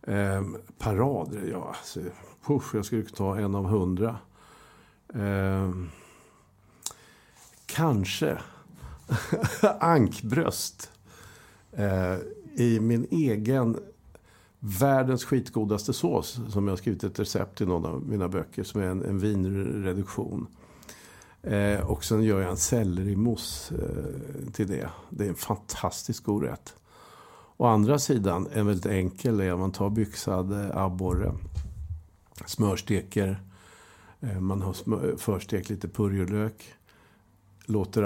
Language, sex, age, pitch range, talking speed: Swedish, male, 60-79, 95-110 Hz, 110 wpm